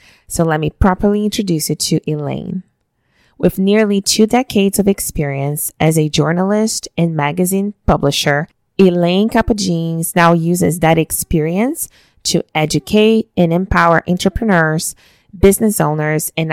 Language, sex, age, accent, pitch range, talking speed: English, female, 20-39, American, 155-190 Hz, 125 wpm